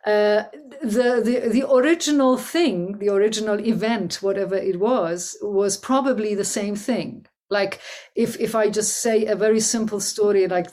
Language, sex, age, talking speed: Arabic, female, 50-69, 155 wpm